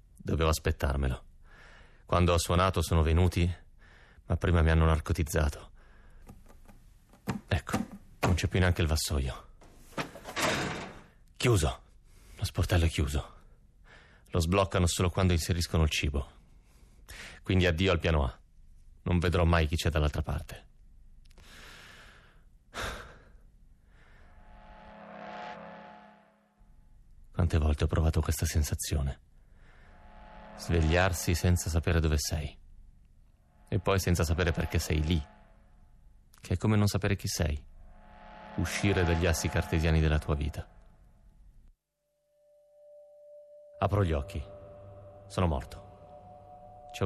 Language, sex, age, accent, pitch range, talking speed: Italian, male, 30-49, native, 80-100 Hz, 105 wpm